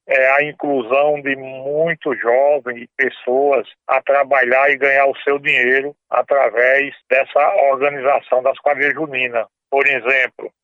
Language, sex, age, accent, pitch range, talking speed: Portuguese, male, 60-79, Brazilian, 130-145 Hz, 130 wpm